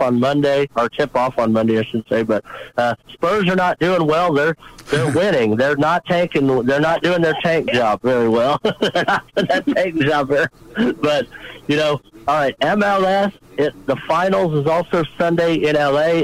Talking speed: 185 wpm